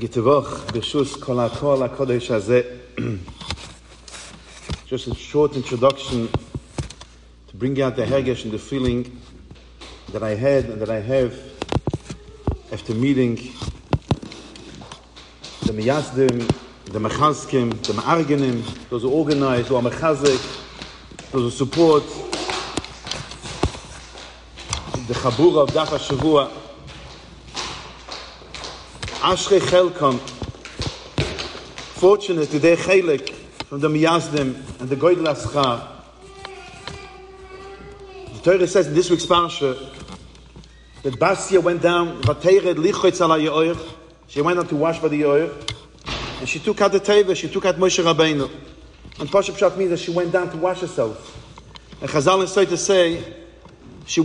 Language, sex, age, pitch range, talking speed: English, male, 50-69, 125-175 Hz, 110 wpm